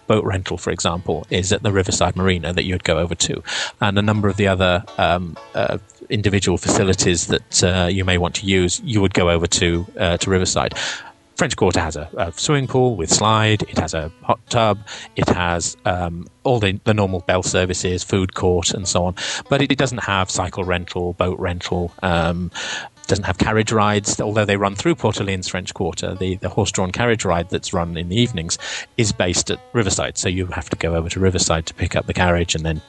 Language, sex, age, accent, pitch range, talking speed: English, male, 30-49, British, 90-105 Hz, 215 wpm